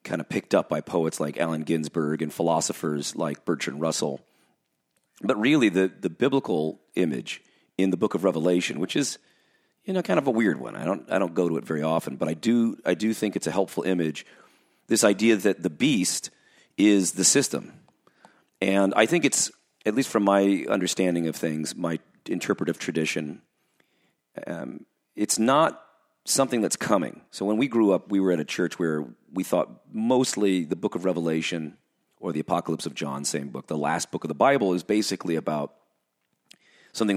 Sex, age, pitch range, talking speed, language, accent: male, 40-59, 80-105 Hz, 185 wpm, English, American